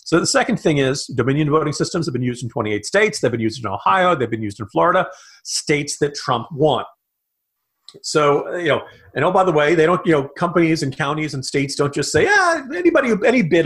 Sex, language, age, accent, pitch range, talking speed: male, English, 40-59, American, 130-180 Hz, 230 wpm